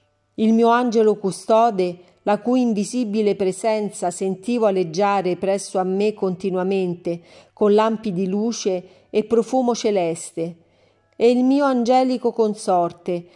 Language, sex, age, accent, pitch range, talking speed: Italian, female, 40-59, native, 185-230 Hz, 115 wpm